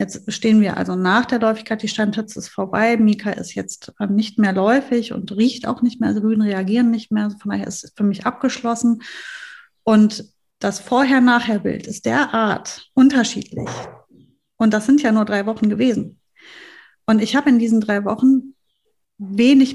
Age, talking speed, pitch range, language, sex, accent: 30-49, 175 wpm, 210-250 Hz, German, female, German